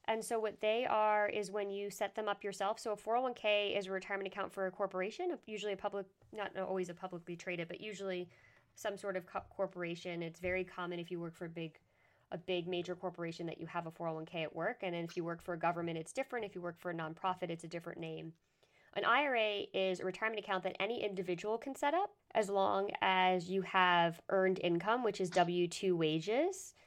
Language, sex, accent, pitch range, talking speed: English, female, American, 175-210 Hz, 220 wpm